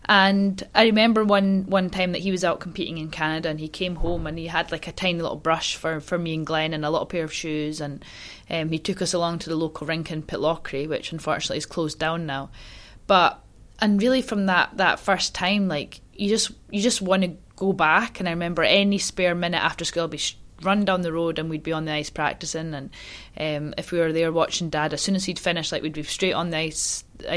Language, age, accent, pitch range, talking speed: English, 20-39, British, 160-190 Hz, 250 wpm